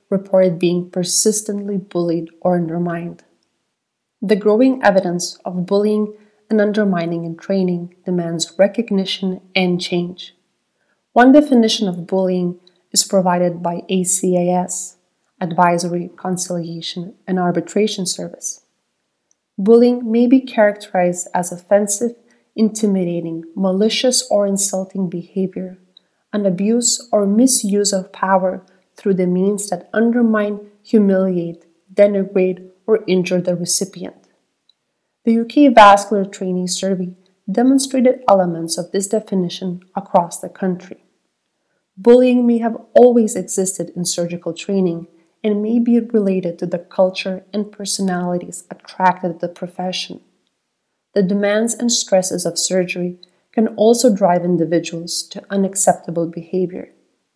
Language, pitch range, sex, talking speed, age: English, 180-210 Hz, female, 110 wpm, 30-49